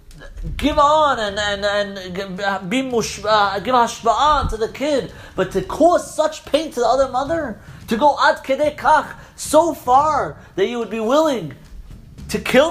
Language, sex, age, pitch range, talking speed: English, male, 30-49, 190-280 Hz, 150 wpm